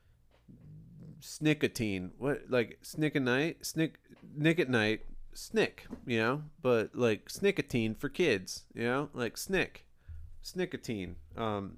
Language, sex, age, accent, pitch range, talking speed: English, male, 30-49, American, 95-135 Hz, 115 wpm